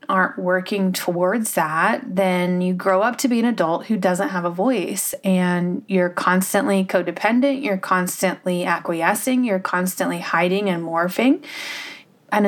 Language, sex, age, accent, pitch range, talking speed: English, female, 20-39, American, 180-215 Hz, 145 wpm